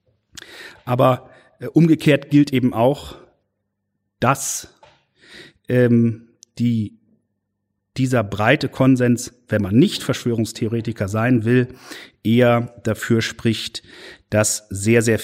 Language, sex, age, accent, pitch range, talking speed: German, male, 40-59, German, 110-140 Hz, 95 wpm